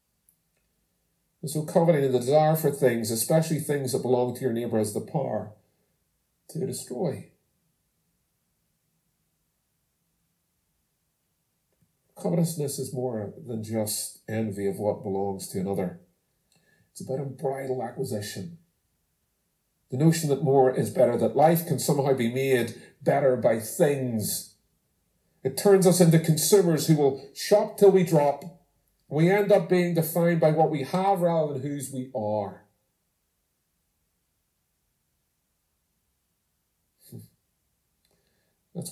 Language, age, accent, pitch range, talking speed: English, 50-69, American, 95-155 Hz, 115 wpm